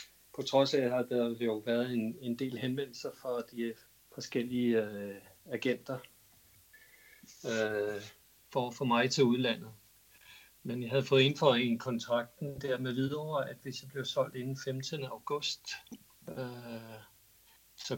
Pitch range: 115-135 Hz